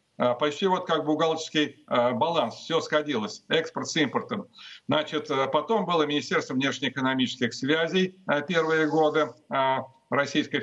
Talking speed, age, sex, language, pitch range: 105 wpm, 50-69, male, Russian, 135-170 Hz